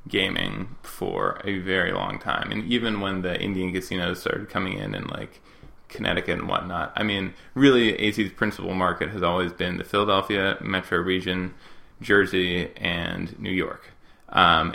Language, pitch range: English, 90-105 Hz